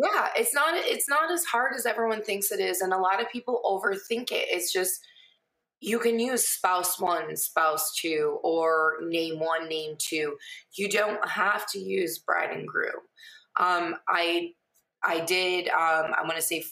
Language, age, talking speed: English, 20-39, 180 wpm